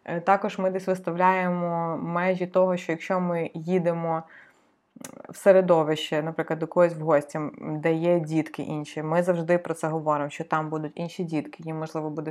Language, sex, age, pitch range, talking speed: Ukrainian, female, 20-39, 165-200 Hz, 165 wpm